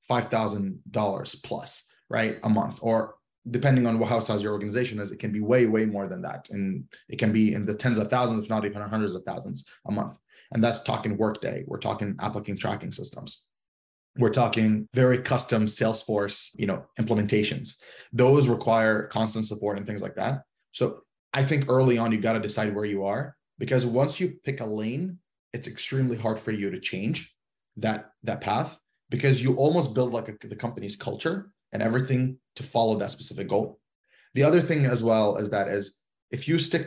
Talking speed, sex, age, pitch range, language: 190 wpm, male, 20-39, 105-130 Hz, English